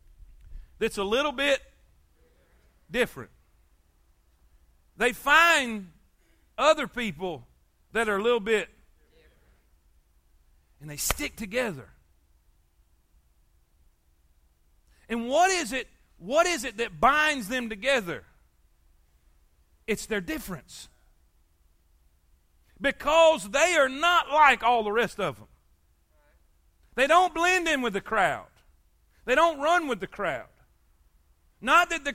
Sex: male